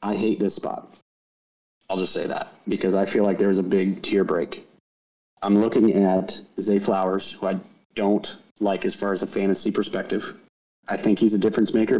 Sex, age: male, 30-49